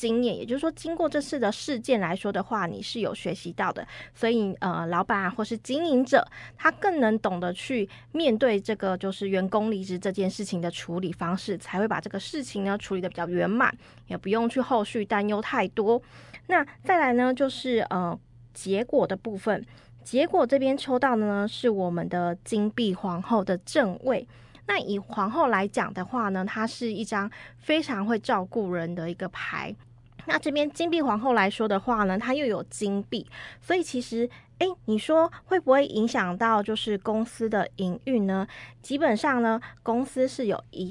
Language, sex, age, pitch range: Chinese, female, 20-39, 195-265 Hz